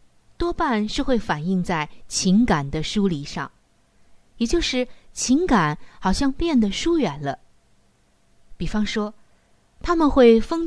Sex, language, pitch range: female, Chinese, 180-255 Hz